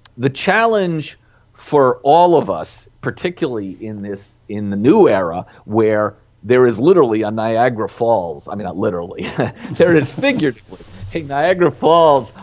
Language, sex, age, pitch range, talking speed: English, male, 40-59, 110-150 Hz, 145 wpm